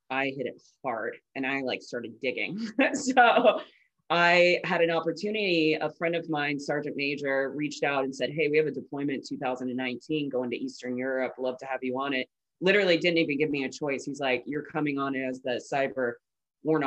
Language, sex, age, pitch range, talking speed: English, female, 20-39, 135-160 Hz, 200 wpm